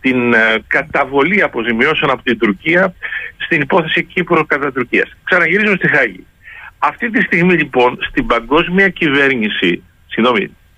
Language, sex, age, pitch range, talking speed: Greek, male, 60-79, 125-195 Hz, 120 wpm